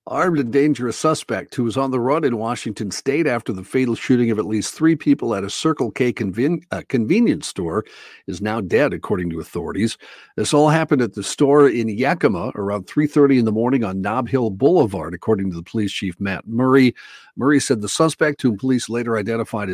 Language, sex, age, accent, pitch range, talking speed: English, male, 50-69, American, 105-140 Hz, 200 wpm